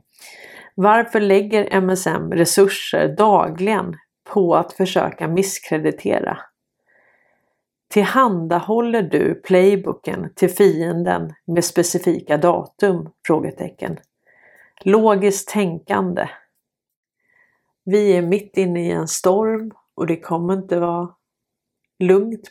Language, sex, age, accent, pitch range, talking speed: Swedish, female, 30-49, native, 175-200 Hz, 85 wpm